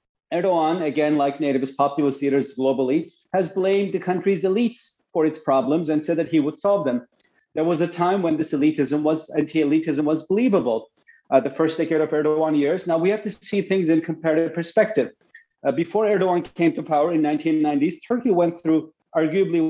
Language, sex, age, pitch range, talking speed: English, male, 40-59, 145-185 Hz, 185 wpm